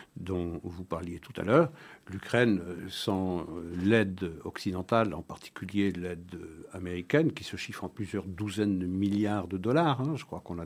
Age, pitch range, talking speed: 60-79, 90-110 Hz, 165 wpm